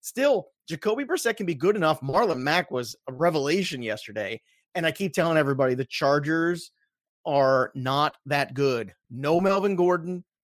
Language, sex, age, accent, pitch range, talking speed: English, male, 30-49, American, 140-180 Hz, 155 wpm